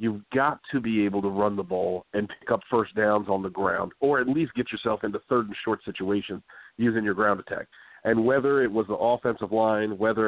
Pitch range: 105-120 Hz